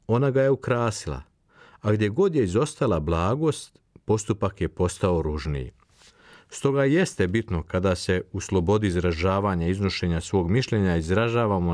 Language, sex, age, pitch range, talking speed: Croatian, male, 50-69, 85-115 Hz, 135 wpm